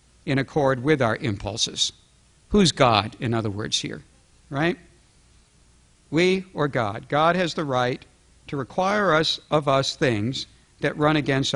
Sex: male